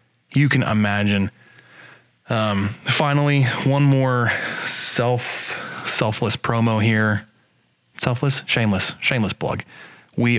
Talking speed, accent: 90 wpm, American